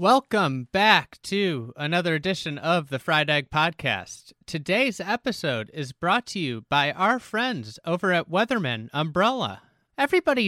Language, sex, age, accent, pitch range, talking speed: English, male, 30-49, American, 145-190 Hz, 135 wpm